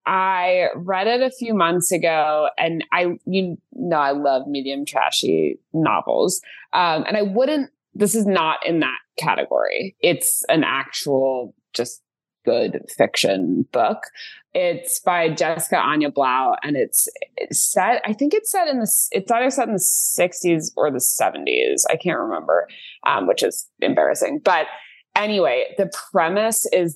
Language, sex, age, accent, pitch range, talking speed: English, female, 20-39, American, 140-190 Hz, 155 wpm